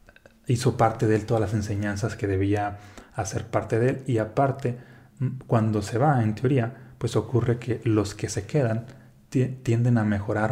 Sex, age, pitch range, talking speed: male, 30-49, 105-120 Hz, 170 wpm